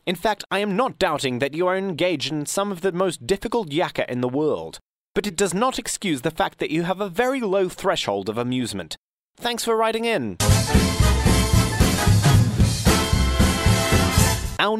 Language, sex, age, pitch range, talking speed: English, male, 30-49, 140-200 Hz, 165 wpm